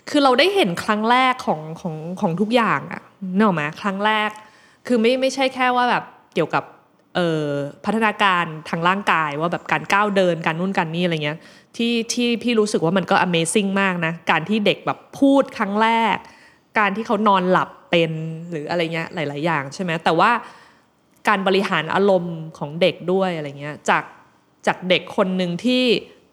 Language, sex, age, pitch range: Thai, female, 20-39, 170-220 Hz